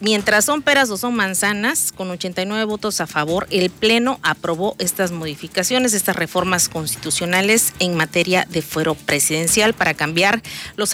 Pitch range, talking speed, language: 175-215 Hz, 150 wpm, Spanish